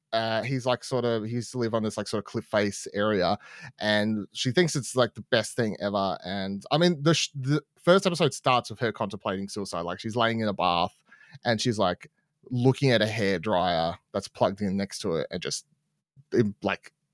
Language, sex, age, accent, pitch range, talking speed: English, male, 30-49, Australian, 105-130 Hz, 215 wpm